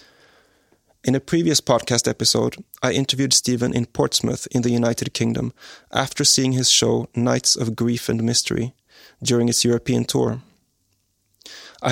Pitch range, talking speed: 115-135 Hz, 140 wpm